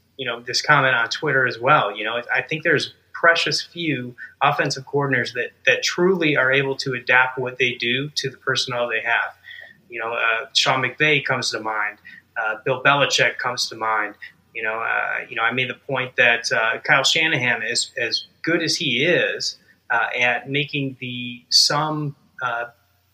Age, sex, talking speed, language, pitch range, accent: 30-49, male, 185 wpm, English, 120-140 Hz, American